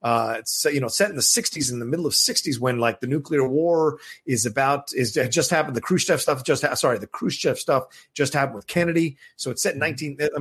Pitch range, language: 125-155 Hz, English